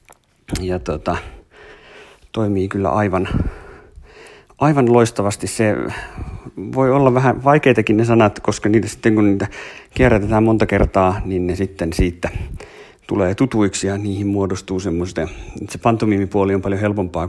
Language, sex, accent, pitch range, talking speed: Finnish, male, native, 95-110 Hz, 130 wpm